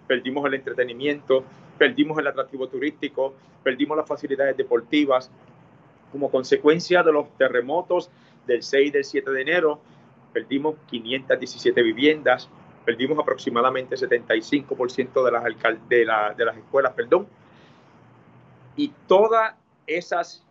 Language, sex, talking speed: Spanish, male, 120 wpm